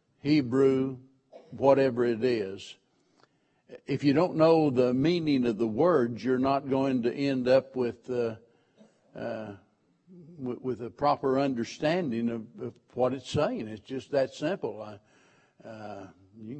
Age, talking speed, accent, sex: 60-79, 135 wpm, American, male